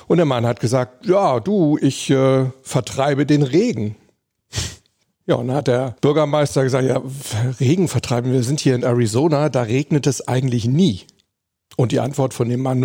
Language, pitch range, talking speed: German, 125-155 Hz, 180 wpm